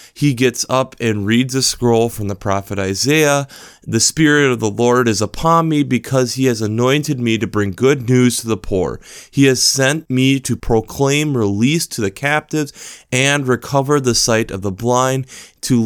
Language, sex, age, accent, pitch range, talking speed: English, male, 30-49, American, 110-140 Hz, 185 wpm